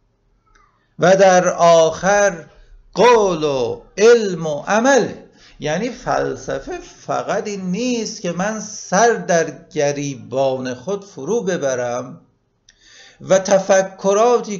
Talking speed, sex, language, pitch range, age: 95 wpm, male, Persian, 125-200 Hz, 50-69